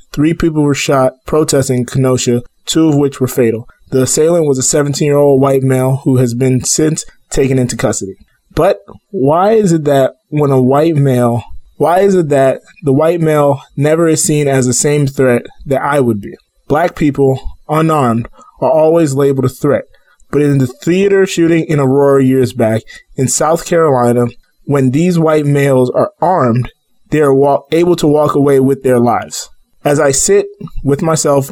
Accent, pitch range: American, 125-150 Hz